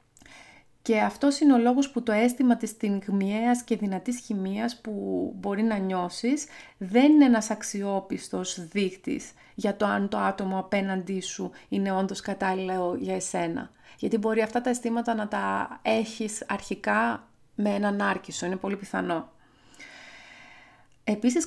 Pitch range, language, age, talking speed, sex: 190-235 Hz, Greek, 30-49, 140 wpm, female